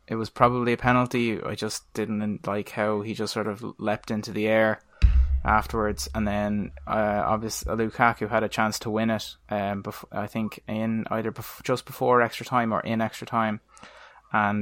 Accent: Irish